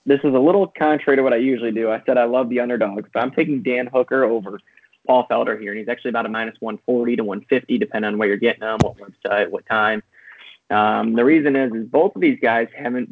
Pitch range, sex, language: 110-125 Hz, male, English